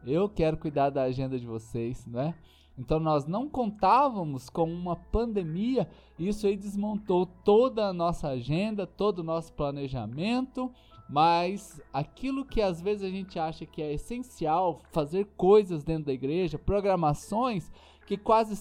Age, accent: 20-39, Brazilian